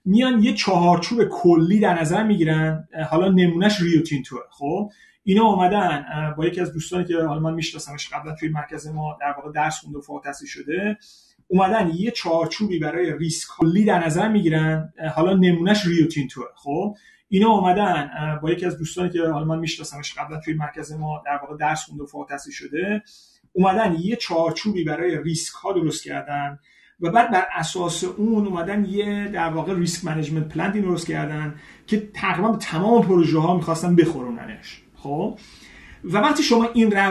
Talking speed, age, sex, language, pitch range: 160 wpm, 30-49, male, Persian, 155-205 Hz